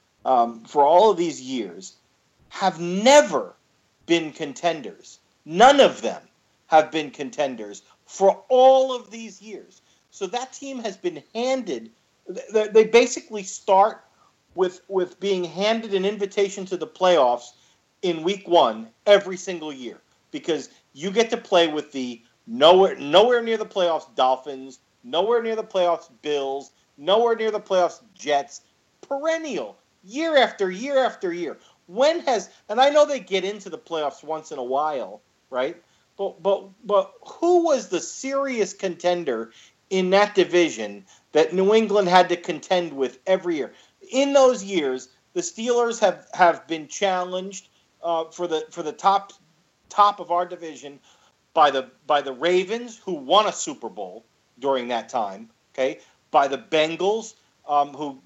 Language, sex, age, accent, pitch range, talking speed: English, male, 40-59, American, 155-225 Hz, 150 wpm